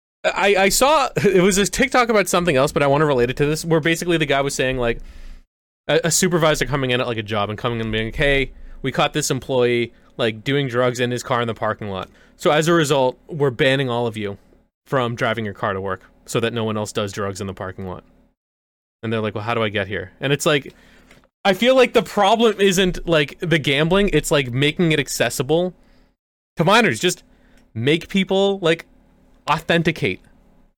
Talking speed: 220 wpm